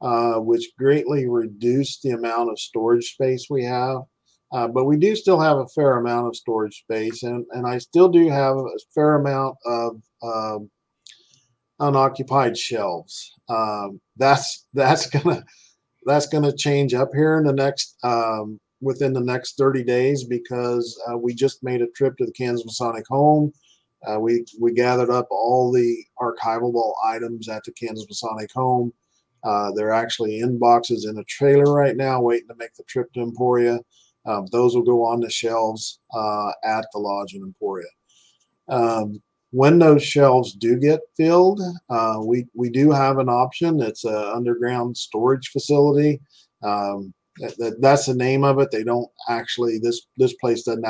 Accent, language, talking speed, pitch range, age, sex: American, English, 170 wpm, 115-135 Hz, 40-59, male